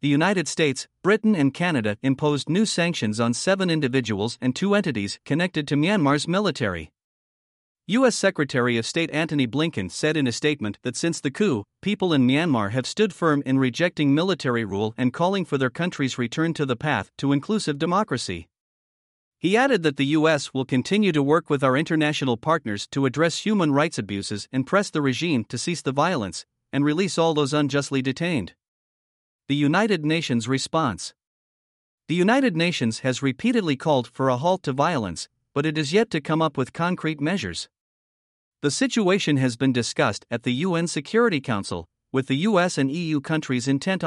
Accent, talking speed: American, 175 wpm